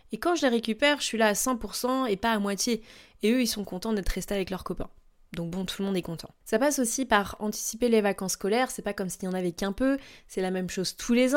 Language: French